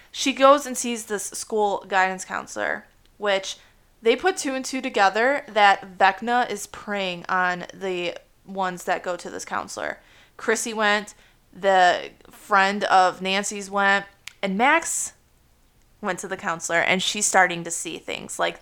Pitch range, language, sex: 180-210 Hz, English, female